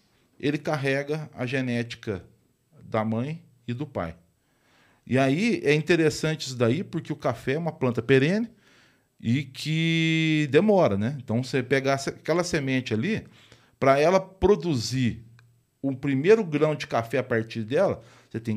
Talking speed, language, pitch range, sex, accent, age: 145 wpm, Portuguese, 120-155 Hz, male, Brazilian, 40-59